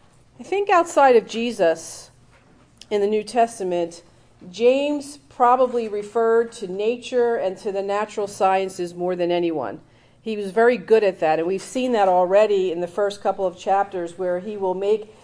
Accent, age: American, 50-69